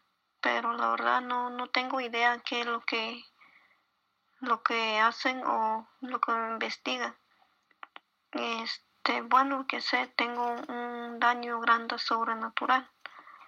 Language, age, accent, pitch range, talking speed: Spanish, 20-39, American, 230-250 Hz, 120 wpm